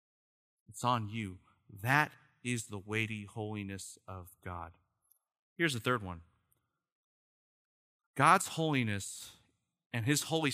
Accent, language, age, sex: American, English, 30-49, male